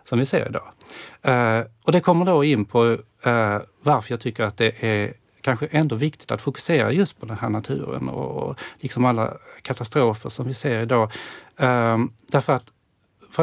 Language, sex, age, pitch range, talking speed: Swedish, male, 40-59, 115-150 Hz, 165 wpm